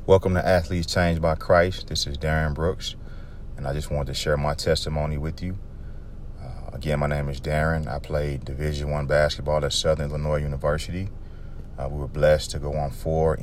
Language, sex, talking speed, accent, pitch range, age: English, male, 190 wpm, American, 70-80 Hz, 30-49